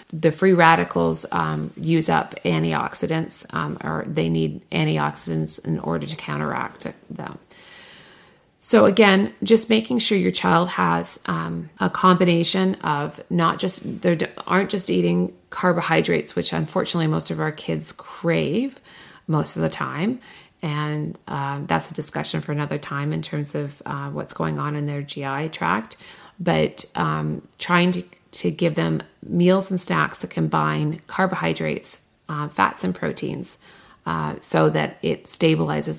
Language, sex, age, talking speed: English, female, 30-49, 145 wpm